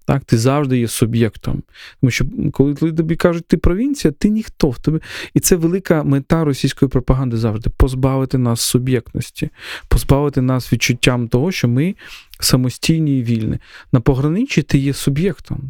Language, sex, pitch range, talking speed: Ukrainian, male, 125-155 Hz, 155 wpm